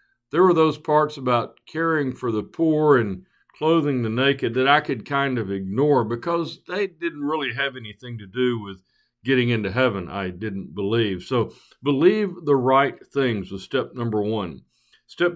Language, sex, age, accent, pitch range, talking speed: English, male, 60-79, American, 120-165 Hz, 170 wpm